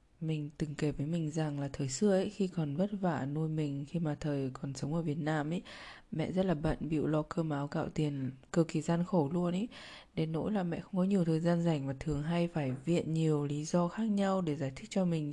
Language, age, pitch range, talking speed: Vietnamese, 20-39, 150-190 Hz, 255 wpm